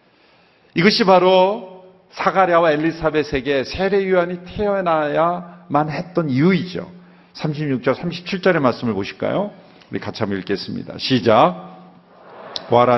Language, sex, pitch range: Korean, male, 120-185 Hz